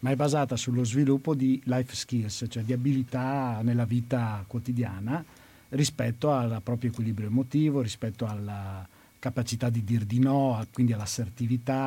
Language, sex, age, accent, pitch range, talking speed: Italian, male, 50-69, native, 115-135 Hz, 140 wpm